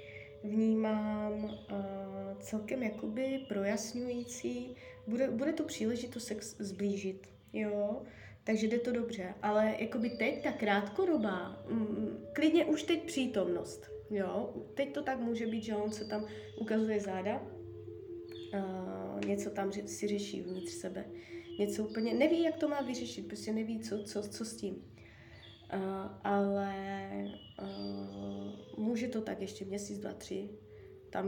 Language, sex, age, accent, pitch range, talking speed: Czech, female, 20-39, native, 180-220 Hz, 135 wpm